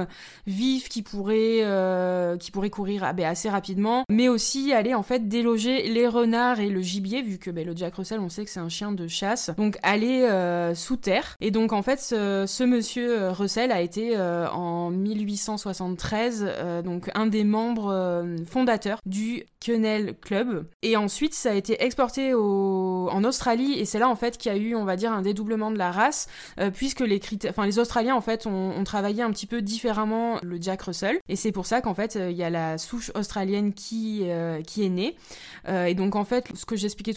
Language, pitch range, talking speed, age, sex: French, 185-225 Hz, 215 wpm, 20-39, female